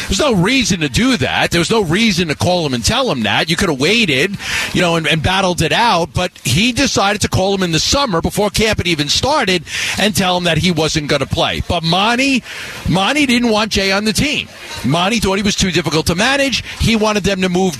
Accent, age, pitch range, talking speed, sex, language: American, 40-59, 180-225 Hz, 250 wpm, male, English